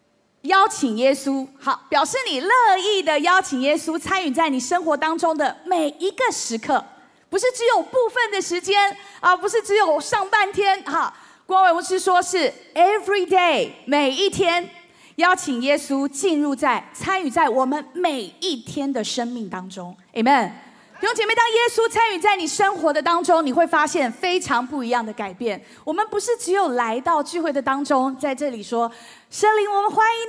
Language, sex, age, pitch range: Chinese, female, 30-49, 260-375 Hz